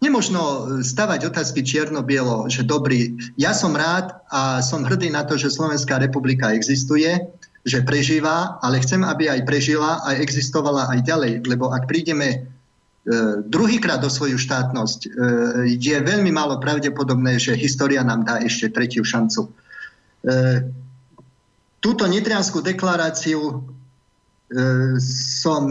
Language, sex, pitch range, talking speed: Slovak, male, 130-155 Hz, 125 wpm